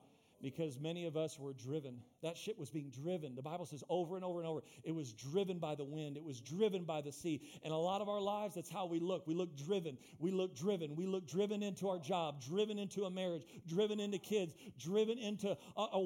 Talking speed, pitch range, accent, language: 235 wpm, 150-210 Hz, American, English